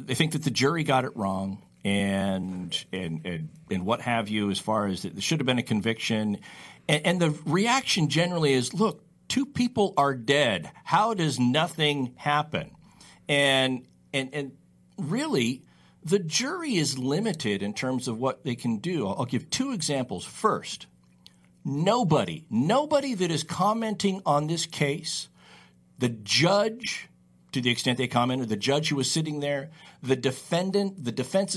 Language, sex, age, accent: English, male, 50-69, American